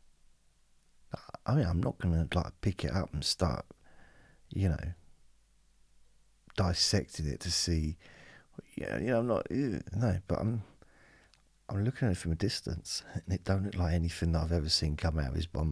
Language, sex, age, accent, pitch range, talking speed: English, male, 40-59, British, 80-95 Hz, 185 wpm